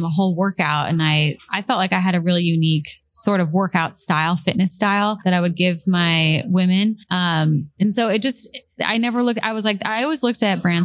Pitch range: 165-200 Hz